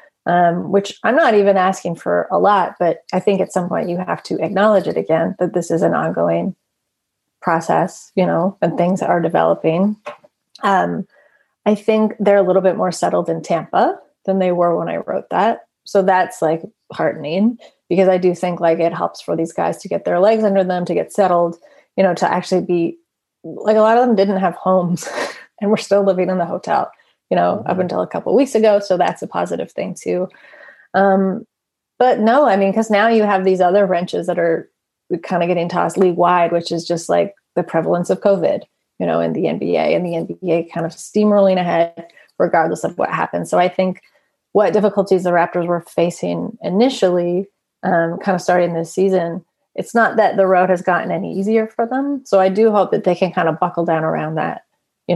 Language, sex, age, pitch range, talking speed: English, female, 30-49, 170-200 Hz, 210 wpm